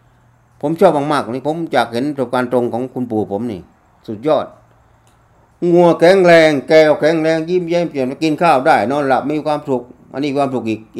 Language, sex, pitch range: Thai, male, 115-155 Hz